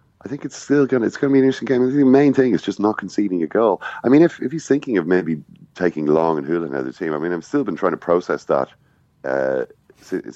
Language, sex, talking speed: English, male, 280 wpm